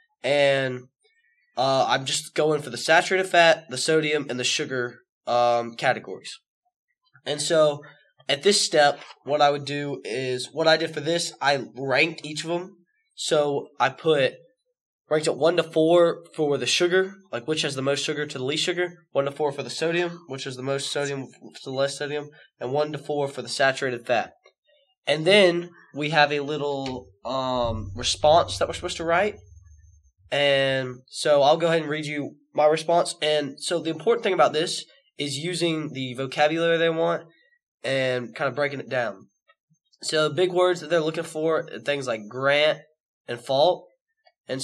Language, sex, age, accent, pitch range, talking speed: English, male, 10-29, American, 135-170 Hz, 185 wpm